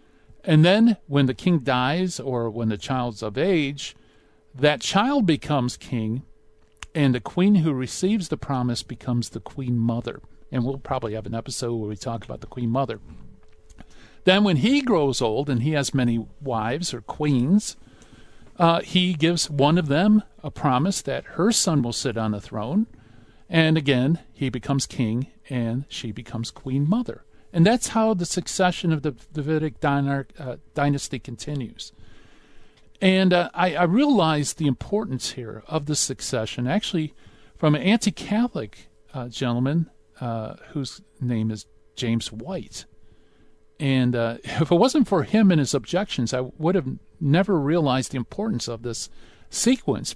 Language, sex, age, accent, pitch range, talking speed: English, male, 50-69, American, 120-170 Hz, 155 wpm